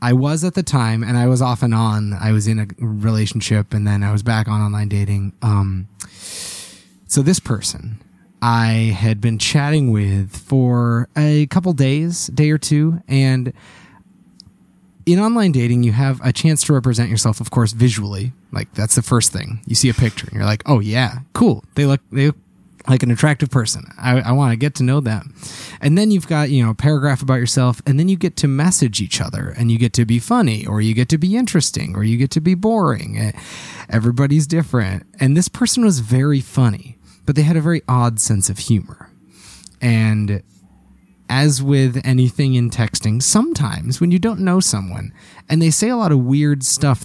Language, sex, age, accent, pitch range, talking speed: English, male, 20-39, American, 110-145 Hz, 200 wpm